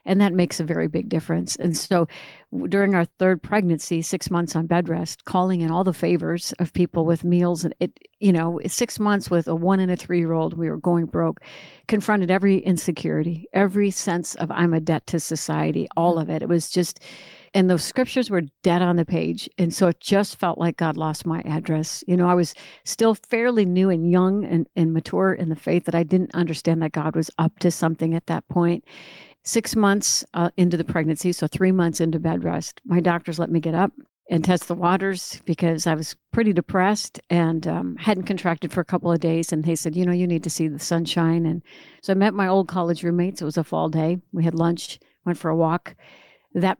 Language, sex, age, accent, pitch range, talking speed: English, female, 60-79, American, 165-185 Hz, 225 wpm